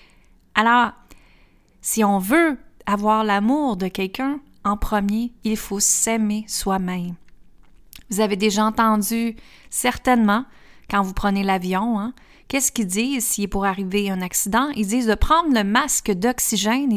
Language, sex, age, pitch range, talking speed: French, female, 30-49, 200-235 Hz, 140 wpm